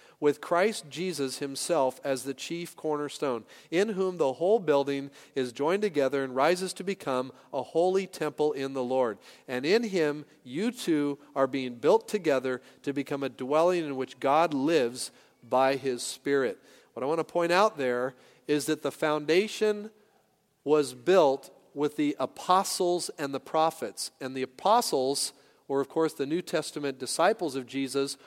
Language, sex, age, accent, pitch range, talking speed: English, male, 40-59, American, 140-180 Hz, 165 wpm